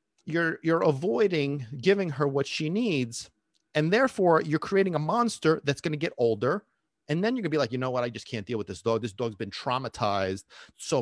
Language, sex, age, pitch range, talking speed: English, male, 40-59, 120-160 Hz, 225 wpm